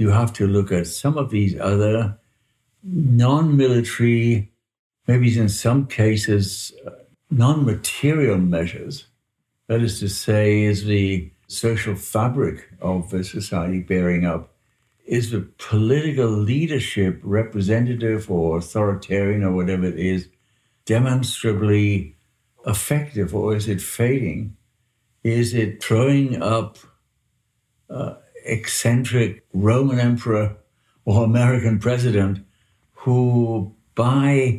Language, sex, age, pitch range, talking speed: English, male, 60-79, 100-125 Hz, 105 wpm